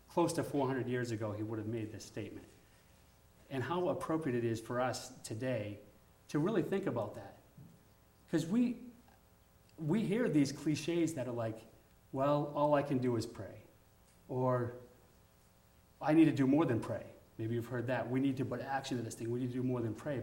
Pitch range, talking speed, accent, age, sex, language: 115-150 Hz, 200 wpm, American, 30-49, male, English